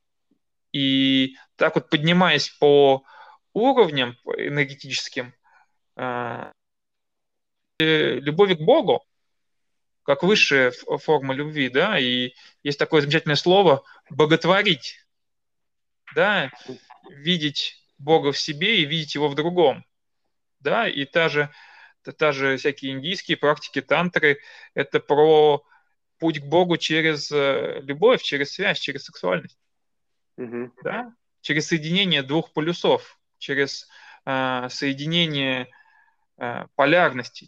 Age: 20-39